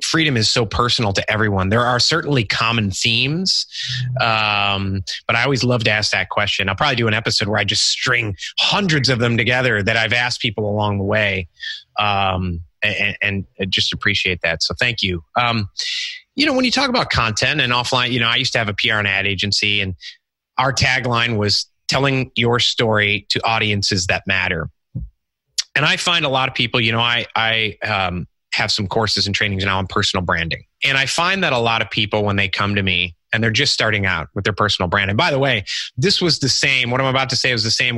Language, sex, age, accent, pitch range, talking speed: English, male, 30-49, American, 100-130 Hz, 225 wpm